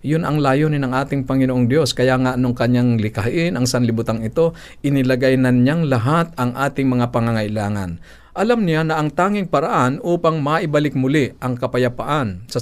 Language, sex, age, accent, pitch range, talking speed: Filipino, male, 50-69, native, 115-150 Hz, 160 wpm